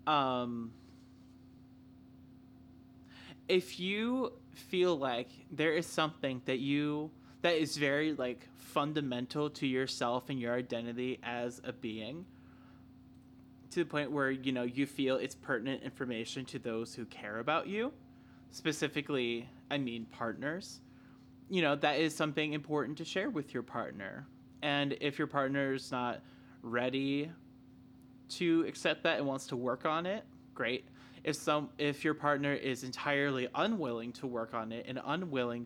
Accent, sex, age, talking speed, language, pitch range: American, male, 20-39, 145 wpm, English, 125-145 Hz